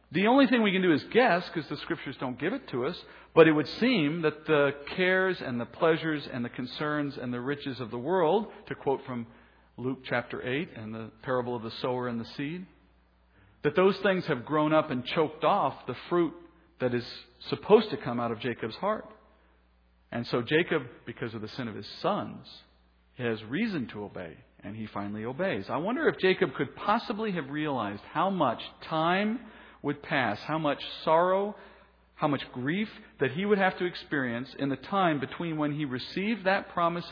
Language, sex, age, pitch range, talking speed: English, male, 50-69, 125-175 Hz, 195 wpm